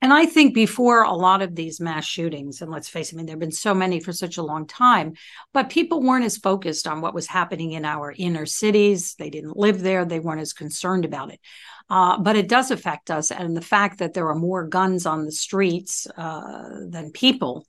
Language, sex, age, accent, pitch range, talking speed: English, female, 60-79, American, 165-210 Hz, 235 wpm